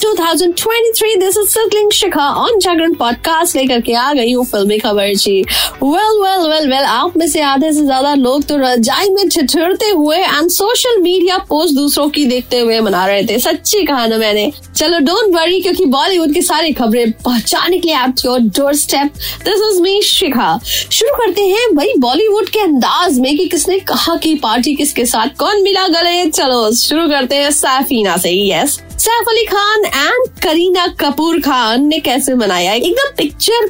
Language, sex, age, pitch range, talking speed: Hindi, female, 20-39, 245-355 Hz, 165 wpm